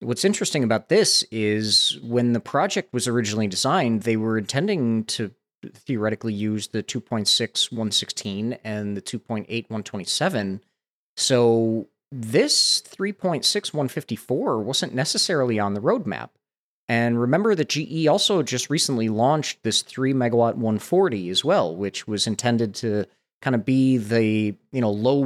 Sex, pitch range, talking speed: male, 105-130 Hz, 165 wpm